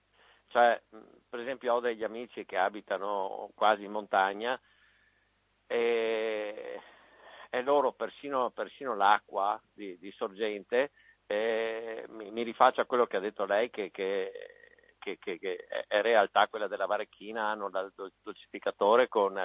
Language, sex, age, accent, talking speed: Italian, male, 50-69, native, 135 wpm